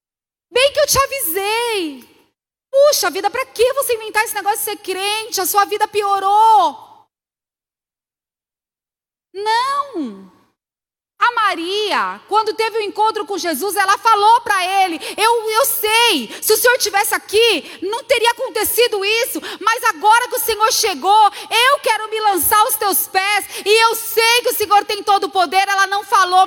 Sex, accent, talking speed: female, Brazilian, 165 wpm